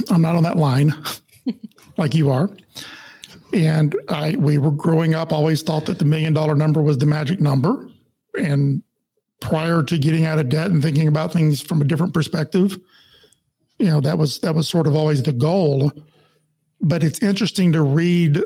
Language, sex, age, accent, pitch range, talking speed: English, male, 50-69, American, 155-175 Hz, 180 wpm